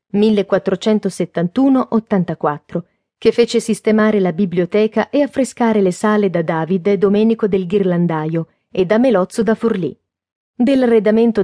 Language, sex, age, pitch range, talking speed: Italian, female, 30-49, 185-230 Hz, 110 wpm